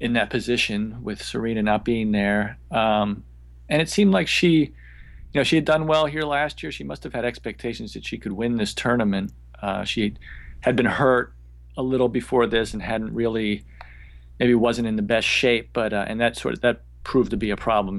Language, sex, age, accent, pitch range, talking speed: English, male, 40-59, American, 95-125 Hz, 215 wpm